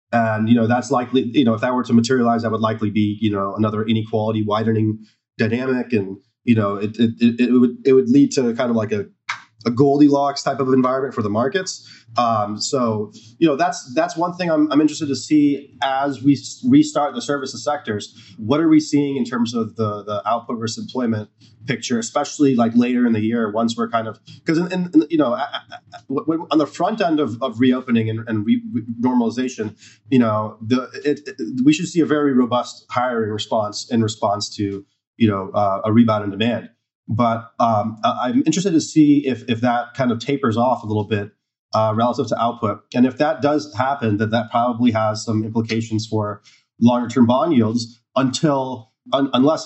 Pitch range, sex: 110-135 Hz, male